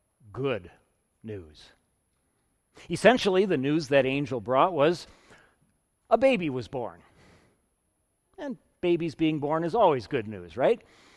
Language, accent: English, American